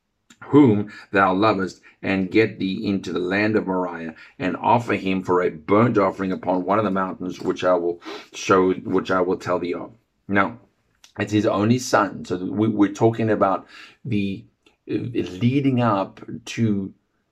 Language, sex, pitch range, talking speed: English, male, 100-115 Hz, 165 wpm